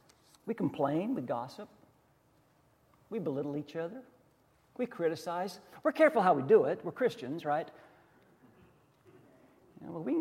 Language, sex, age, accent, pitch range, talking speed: English, male, 50-69, American, 145-190 Hz, 125 wpm